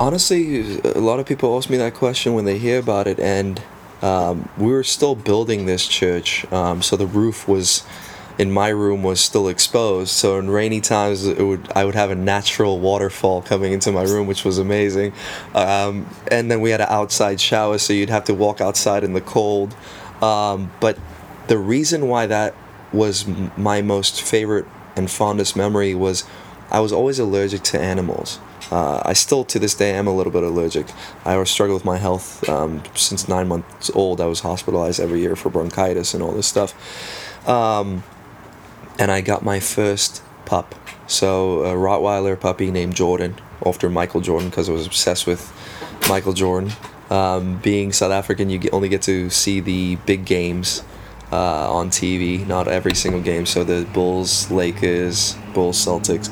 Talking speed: 180 wpm